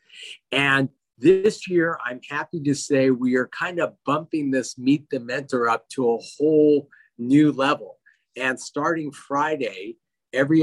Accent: American